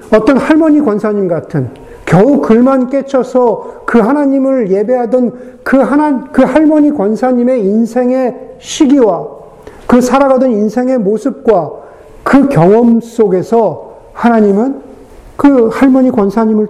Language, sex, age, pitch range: Korean, male, 50-69, 190-260 Hz